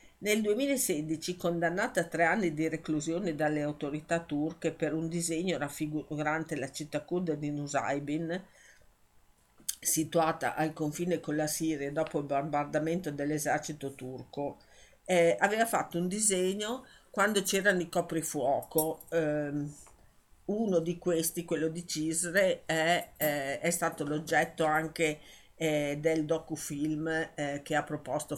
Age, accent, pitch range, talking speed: 50-69, native, 145-170 Hz, 125 wpm